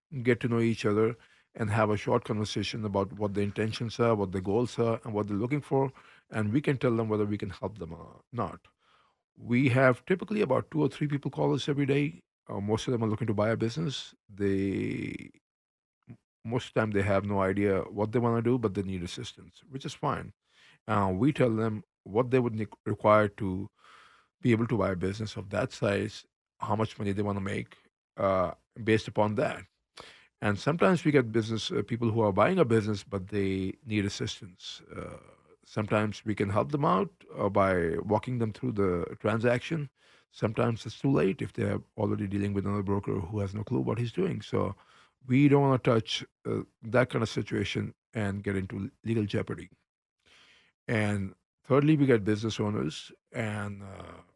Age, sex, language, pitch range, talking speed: 50-69, male, English, 100-125 Hz, 200 wpm